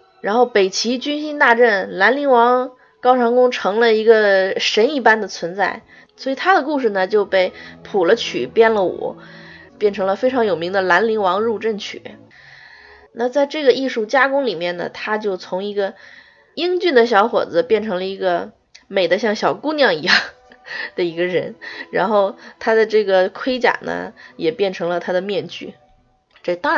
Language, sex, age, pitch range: Chinese, female, 20-39, 195-270 Hz